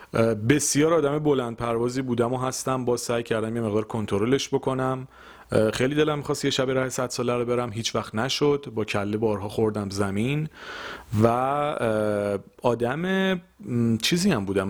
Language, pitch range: Persian, 105-140 Hz